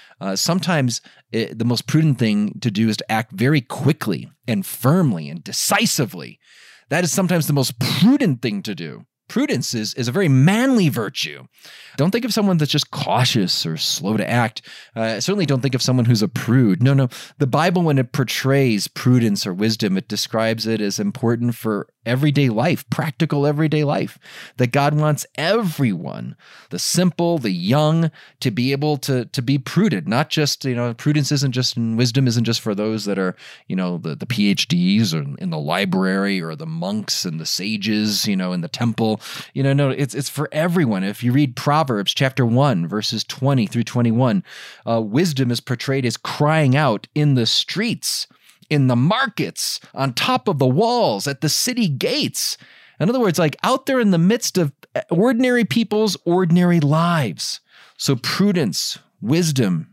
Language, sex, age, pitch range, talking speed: English, male, 30-49, 120-165 Hz, 180 wpm